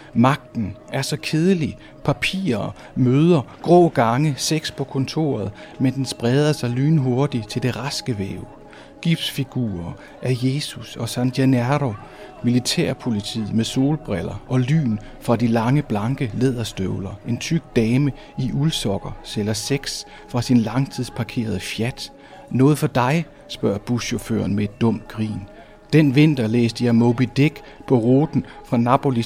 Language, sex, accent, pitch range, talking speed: Danish, male, native, 115-140 Hz, 135 wpm